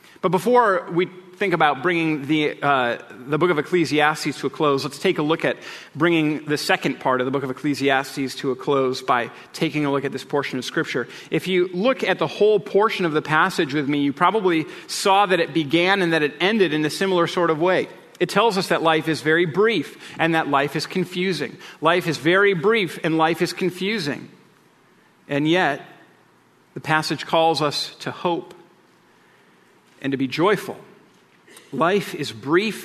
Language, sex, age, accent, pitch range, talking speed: English, male, 40-59, American, 150-185 Hz, 190 wpm